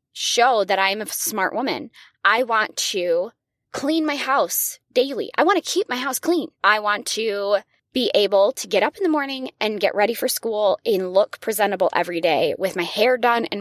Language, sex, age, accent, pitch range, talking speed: English, female, 20-39, American, 185-265 Hz, 205 wpm